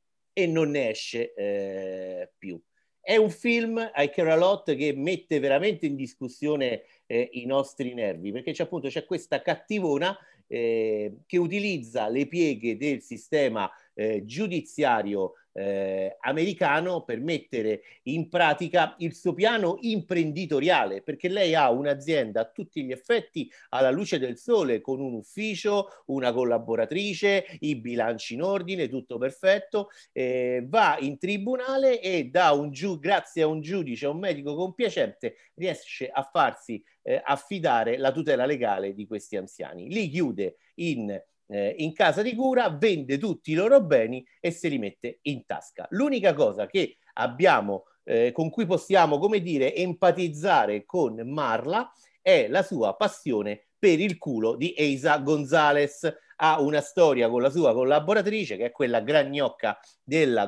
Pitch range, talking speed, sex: 130-195 Hz, 145 wpm, male